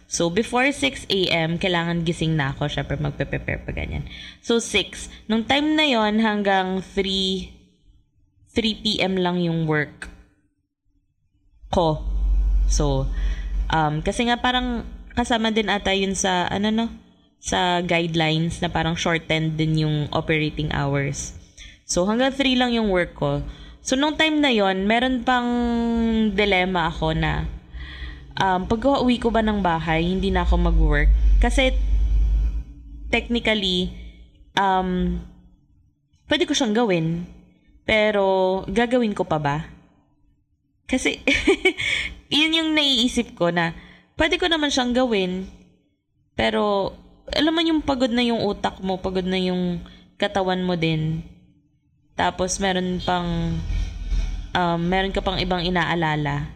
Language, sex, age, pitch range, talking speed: English, female, 20-39, 155-225 Hz, 125 wpm